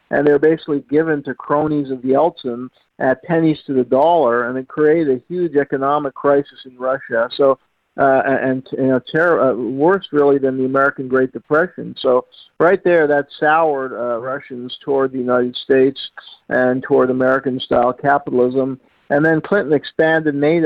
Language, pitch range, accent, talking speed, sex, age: English, 130-145 Hz, American, 165 wpm, male, 50-69